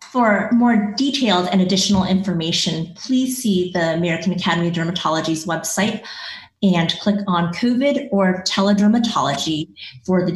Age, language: 30-49, English